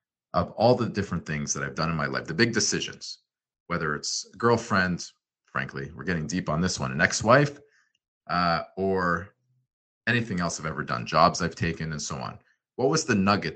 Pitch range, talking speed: 80-105 Hz, 185 wpm